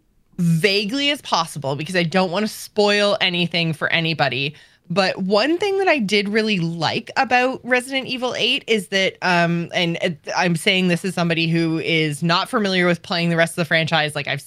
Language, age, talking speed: English, 20-39, 195 wpm